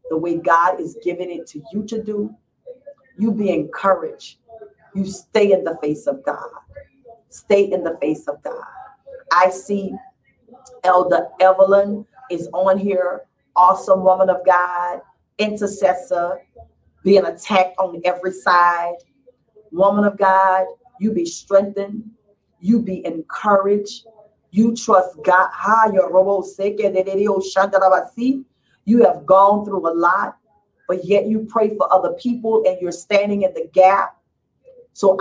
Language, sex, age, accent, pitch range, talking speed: English, female, 40-59, American, 185-240 Hz, 130 wpm